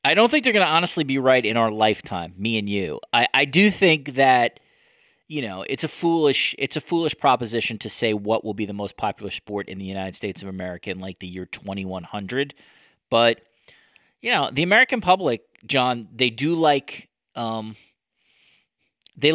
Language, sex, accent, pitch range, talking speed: English, male, American, 105-140 Hz, 195 wpm